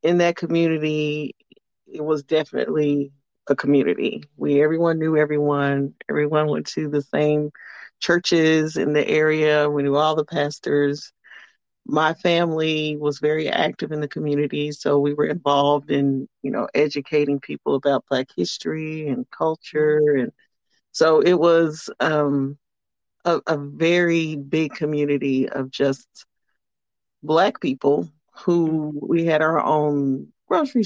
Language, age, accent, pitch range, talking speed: English, 40-59, American, 140-155 Hz, 130 wpm